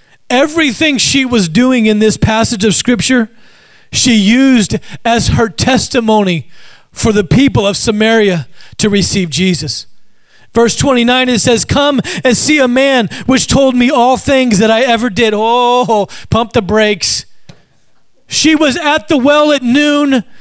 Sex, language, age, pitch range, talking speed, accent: male, English, 40-59, 225-295 Hz, 150 wpm, American